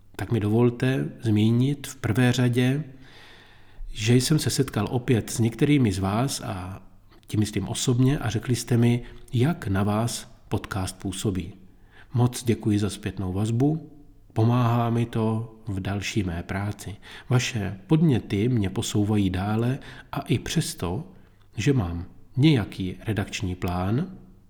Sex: male